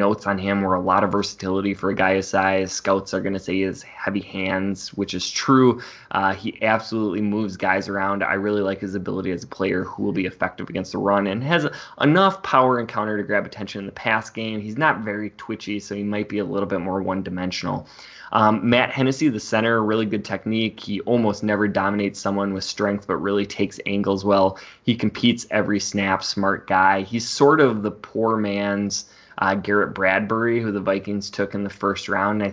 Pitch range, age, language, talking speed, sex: 95-110 Hz, 20-39, English, 215 wpm, male